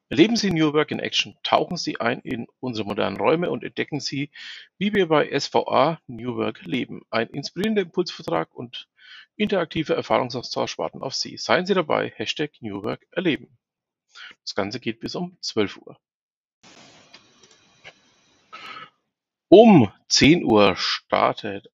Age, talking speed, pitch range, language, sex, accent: 50-69, 140 wpm, 120-195 Hz, German, male, German